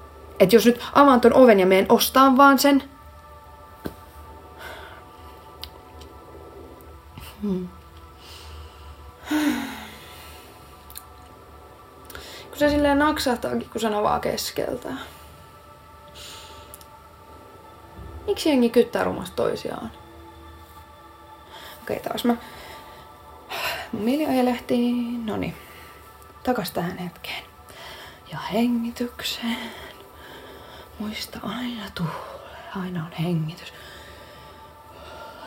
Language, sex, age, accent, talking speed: Finnish, female, 30-49, native, 70 wpm